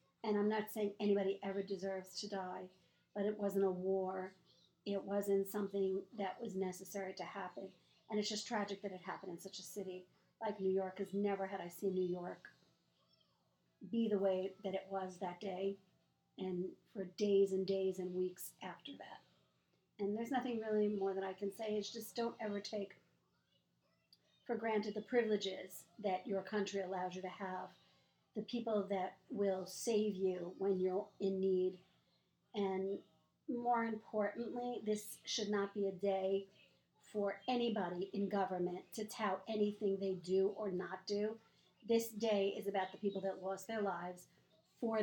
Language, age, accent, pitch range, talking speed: English, 50-69, American, 190-215 Hz, 170 wpm